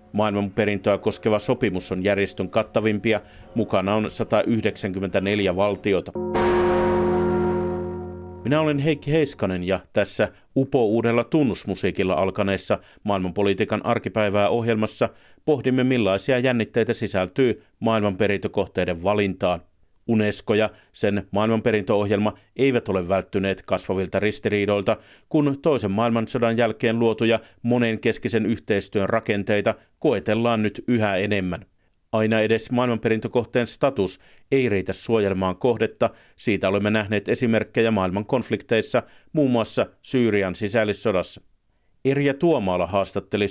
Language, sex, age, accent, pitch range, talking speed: Finnish, male, 50-69, native, 100-115 Hz, 100 wpm